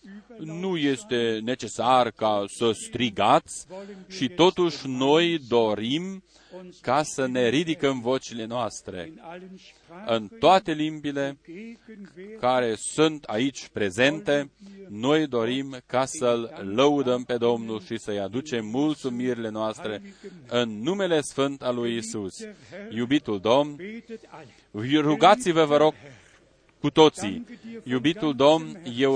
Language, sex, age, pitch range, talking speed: Romanian, male, 40-59, 125-165 Hz, 105 wpm